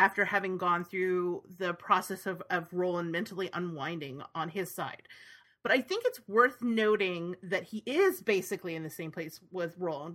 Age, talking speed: 30-49, 175 wpm